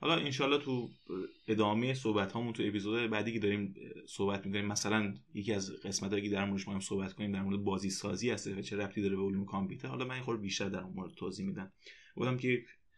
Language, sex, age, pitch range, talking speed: Persian, male, 20-39, 100-130 Hz, 210 wpm